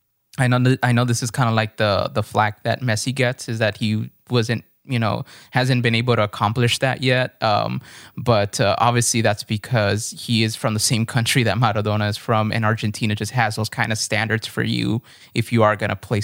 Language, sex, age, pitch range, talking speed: English, male, 20-39, 110-125 Hz, 225 wpm